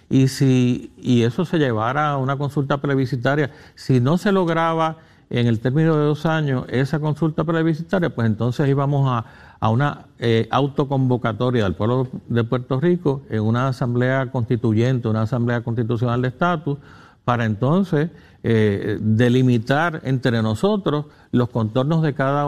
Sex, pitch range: male, 115-150 Hz